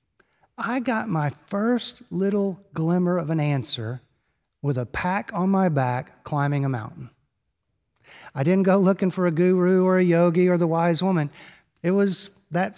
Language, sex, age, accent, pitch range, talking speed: English, male, 50-69, American, 155-200 Hz, 165 wpm